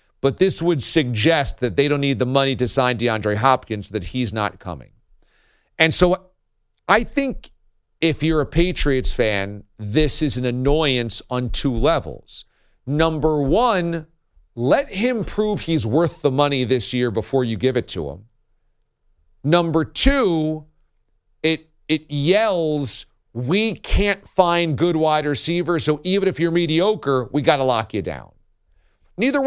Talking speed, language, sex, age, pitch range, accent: 150 wpm, English, male, 40-59, 115-160 Hz, American